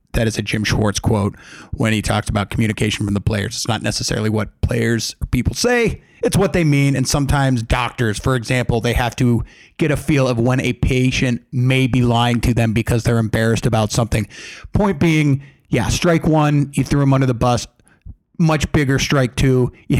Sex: male